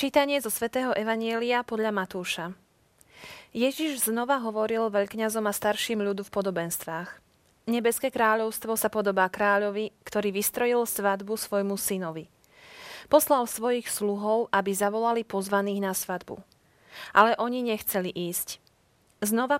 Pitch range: 195-230 Hz